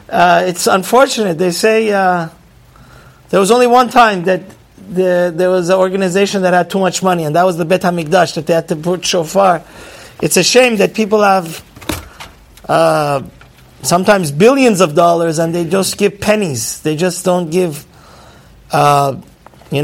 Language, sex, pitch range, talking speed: English, male, 170-225 Hz, 170 wpm